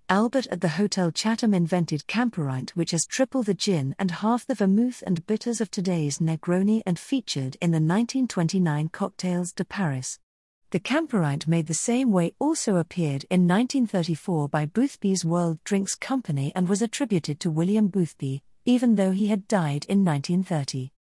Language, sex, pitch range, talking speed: English, female, 155-205 Hz, 160 wpm